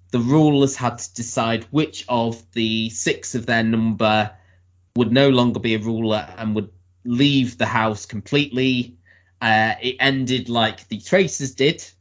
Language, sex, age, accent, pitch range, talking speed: English, male, 20-39, British, 110-135 Hz, 155 wpm